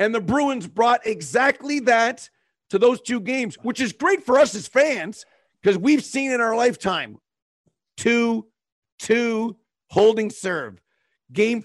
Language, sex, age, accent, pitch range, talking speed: English, male, 50-69, American, 175-230 Hz, 145 wpm